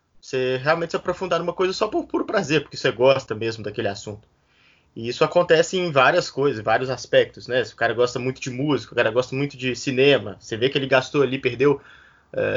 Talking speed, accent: 220 wpm, Brazilian